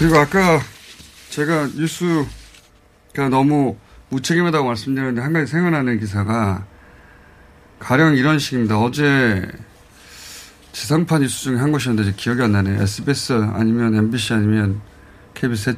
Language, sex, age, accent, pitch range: Korean, male, 30-49, native, 100-145 Hz